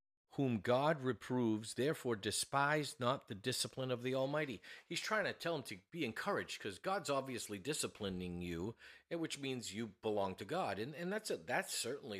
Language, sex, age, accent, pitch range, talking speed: English, male, 50-69, American, 105-140 Hz, 175 wpm